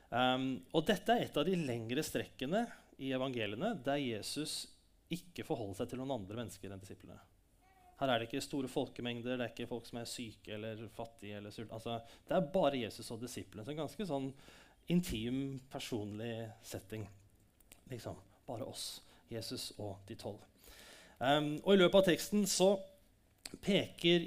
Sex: male